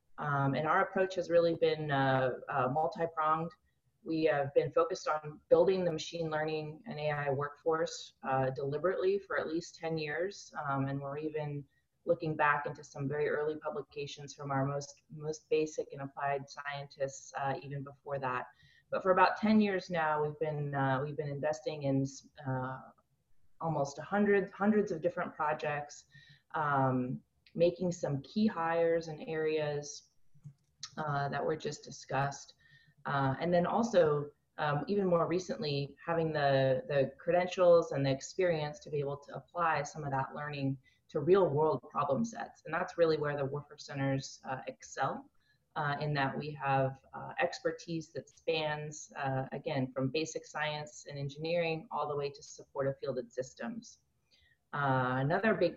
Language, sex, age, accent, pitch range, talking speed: English, female, 30-49, American, 140-165 Hz, 160 wpm